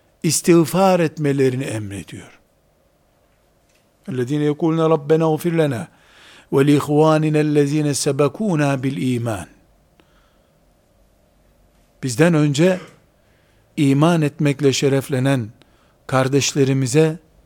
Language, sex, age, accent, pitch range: Turkish, male, 60-79, native, 125-175 Hz